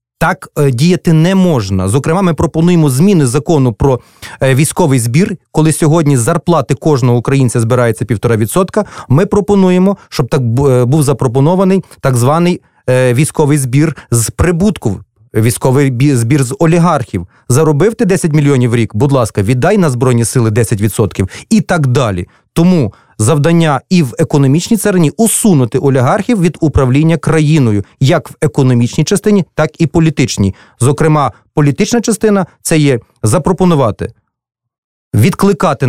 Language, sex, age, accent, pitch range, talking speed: Russian, male, 30-49, native, 125-170 Hz, 130 wpm